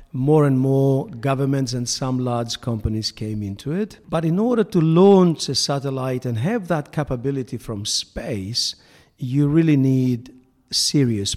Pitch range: 120-155 Hz